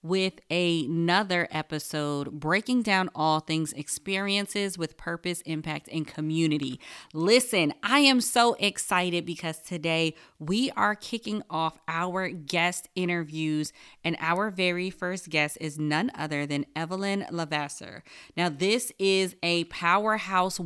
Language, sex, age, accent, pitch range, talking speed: English, female, 20-39, American, 155-200 Hz, 130 wpm